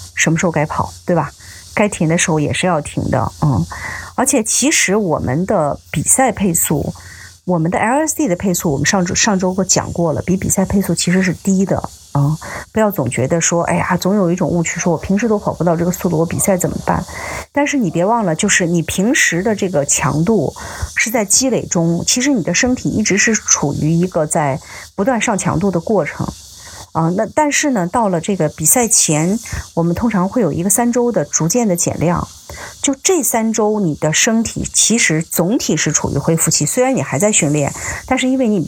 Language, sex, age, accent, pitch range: Chinese, female, 30-49, native, 155-215 Hz